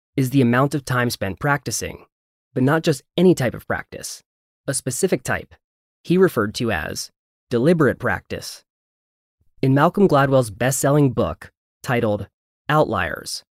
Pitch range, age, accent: 110-150 Hz, 20-39, American